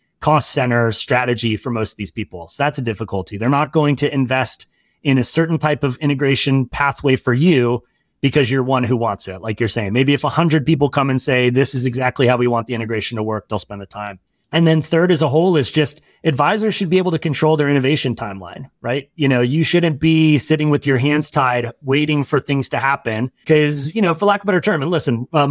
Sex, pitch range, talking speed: male, 125-160 Hz, 240 wpm